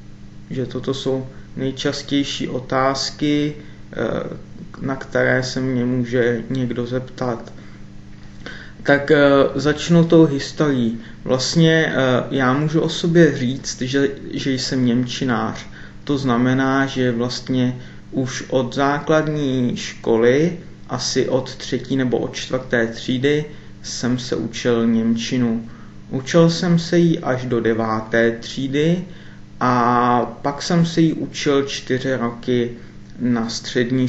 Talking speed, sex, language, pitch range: 110 wpm, male, Czech, 120-140 Hz